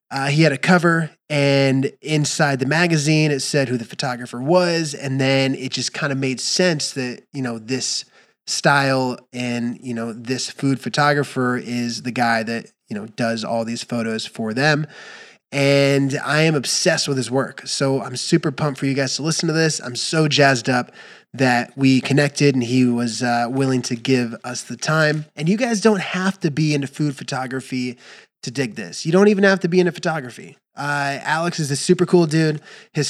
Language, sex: English, male